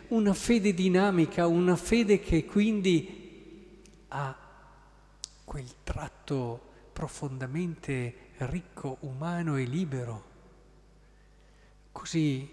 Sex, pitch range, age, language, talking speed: male, 130-160 Hz, 50-69, Italian, 75 wpm